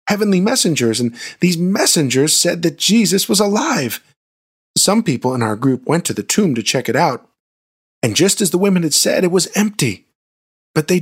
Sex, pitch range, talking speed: male, 120-175 Hz, 190 wpm